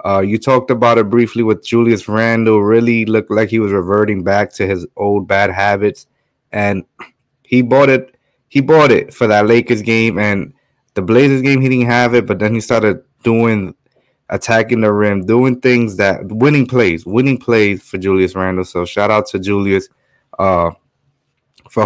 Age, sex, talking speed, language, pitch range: 20-39, male, 180 wpm, English, 105-130 Hz